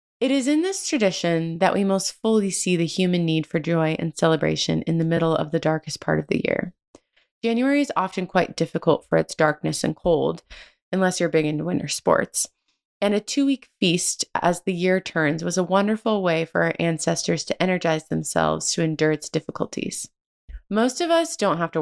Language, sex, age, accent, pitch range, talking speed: English, female, 20-39, American, 160-200 Hz, 195 wpm